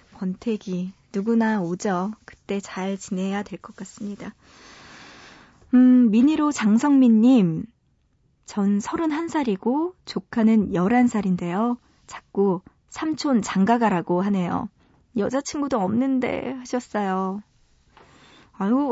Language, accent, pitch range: Korean, native, 195-250 Hz